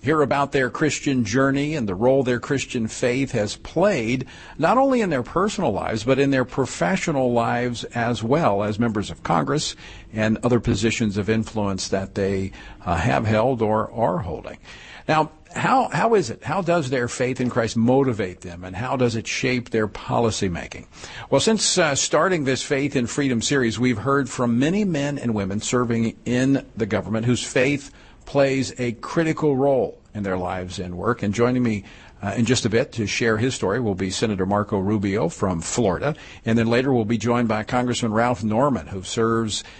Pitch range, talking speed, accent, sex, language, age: 110-135 Hz, 190 wpm, American, male, English, 50-69